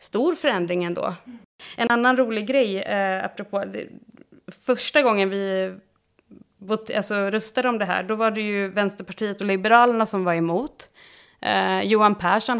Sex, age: female, 30-49